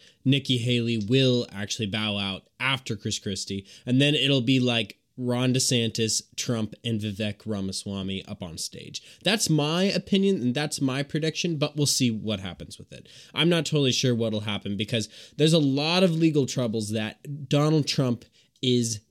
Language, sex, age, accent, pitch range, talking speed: English, male, 20-39, American, 110-160 Hz, 170 wpm